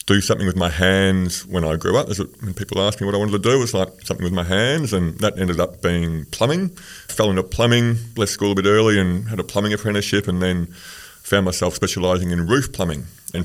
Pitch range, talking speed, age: 90-110 Hz, 235 wpm, 30-49